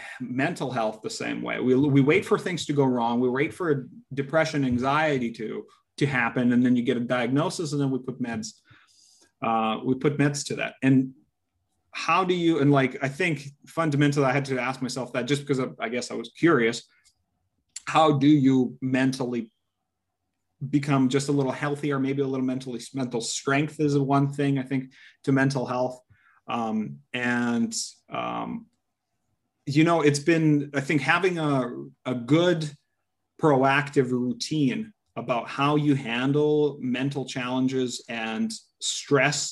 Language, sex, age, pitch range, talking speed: English, male, 30-49, 125-145 Hz, 165 wpm